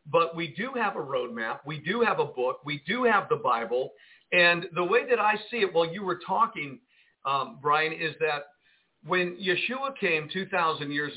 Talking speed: 195 wpm